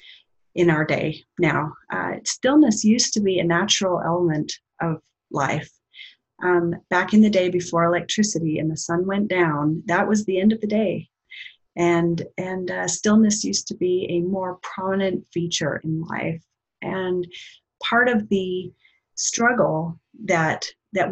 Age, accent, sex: 30-49, American, female